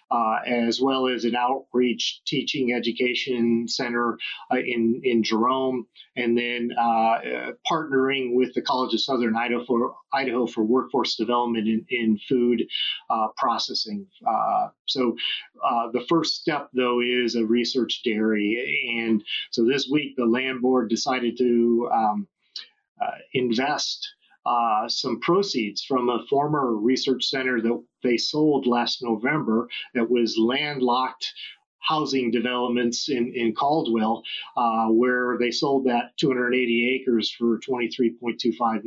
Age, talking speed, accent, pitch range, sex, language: 40-59, 135 wpm, American, 115-130 Hz, male, English